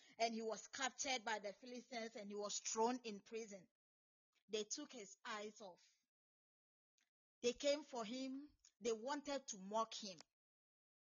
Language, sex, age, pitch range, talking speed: English, female, 40-59, 205-275 Hz, 145 wpm